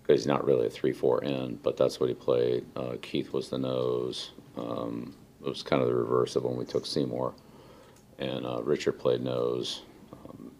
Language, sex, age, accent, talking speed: English, male, 50-69, American, 200 wpm